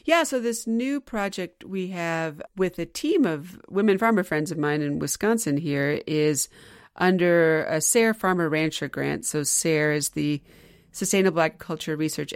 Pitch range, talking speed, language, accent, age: 160-195 Hz, 160 wpm, English, American, 40-59